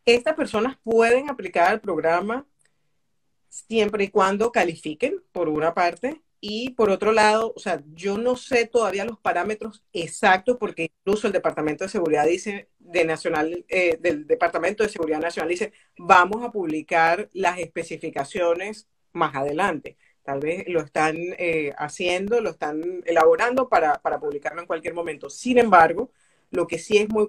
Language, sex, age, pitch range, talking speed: Spanish, female, 40-59, 165-220 Hz, 155 wpm